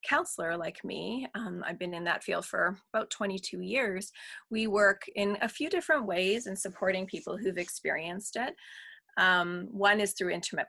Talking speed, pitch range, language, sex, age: 175 wpm, 175-210 Hz, English, female, 30-49